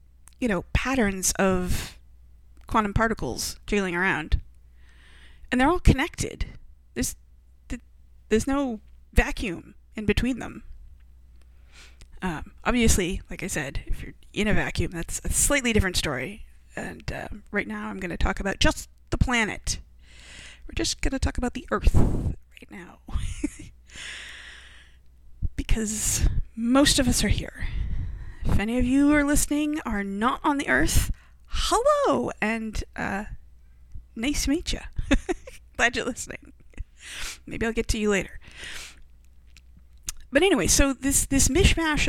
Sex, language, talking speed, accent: female, English, 135 wpm, American